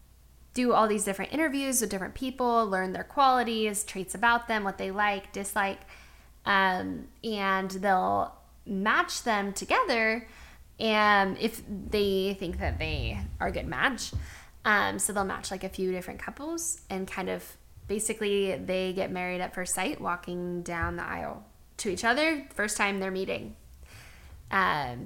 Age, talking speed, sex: 10-29, 155 wpm, female